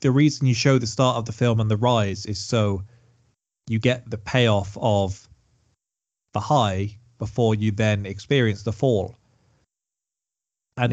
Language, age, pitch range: English, 30-49, 105-125 Hz